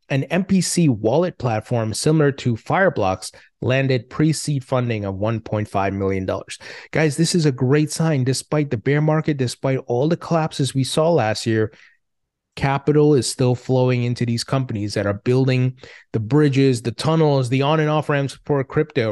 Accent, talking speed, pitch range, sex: American, 165 wpm, 120-155 Hz, male